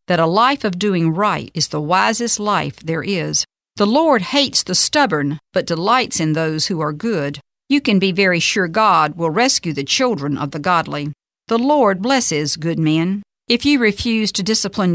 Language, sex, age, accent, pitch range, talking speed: English, female, 50-69, American, 160-230 Hz, 190 wpm